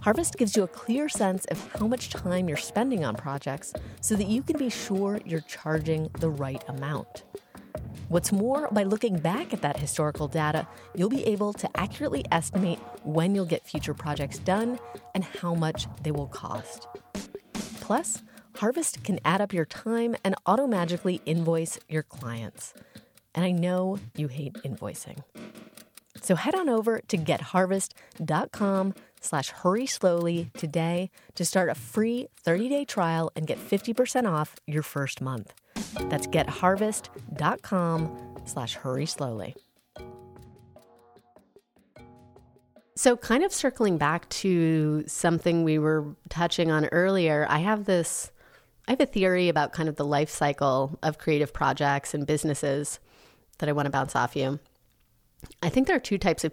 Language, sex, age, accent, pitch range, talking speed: English, female, 30-49, American, 145-200 Hz, 155 wpm